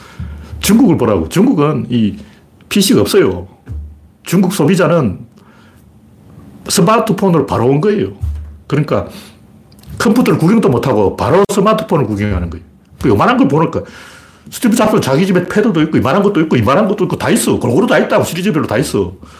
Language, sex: Korean, male